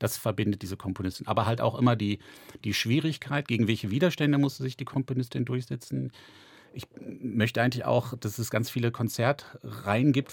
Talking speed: 170 wpm